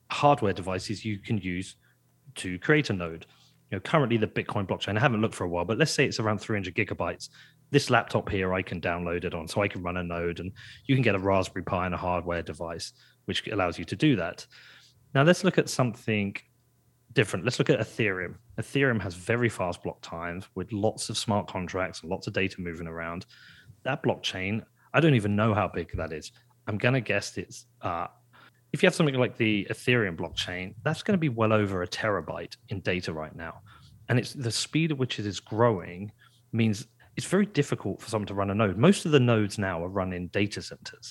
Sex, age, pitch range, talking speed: male, 30-49, 95-120 Hz, 220 wpm